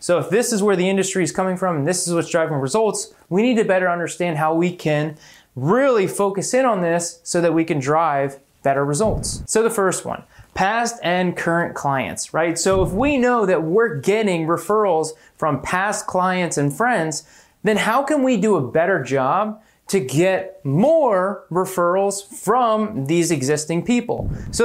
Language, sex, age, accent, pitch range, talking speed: English, male, 20-39, American, 160-220 Hz, 185 wpm